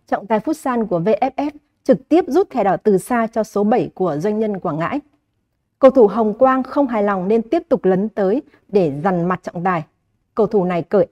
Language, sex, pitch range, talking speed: Vietnamese, female, 195-250 Hz, 225 wpm